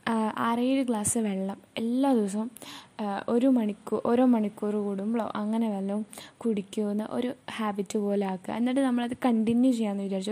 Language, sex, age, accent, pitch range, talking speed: Malayalam, female, 10-29, native, 210-255 Hz, 130 wpm